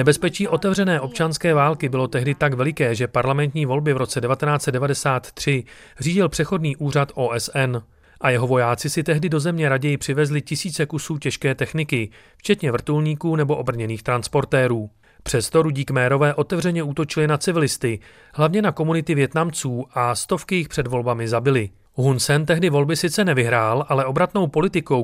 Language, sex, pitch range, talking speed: Czech, male, 125-155 Hz, 150 wpm